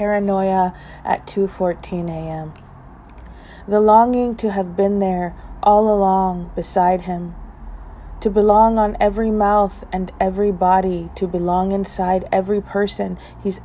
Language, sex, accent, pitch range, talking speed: English, female, American, 170-195 Hz, 130 wpm